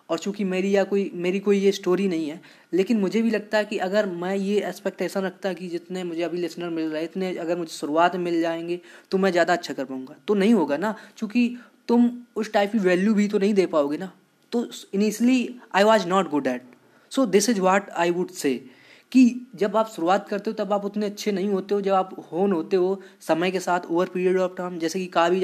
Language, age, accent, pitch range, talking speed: Hindi, 20-39, native, 170-210 Hz, 245 wpm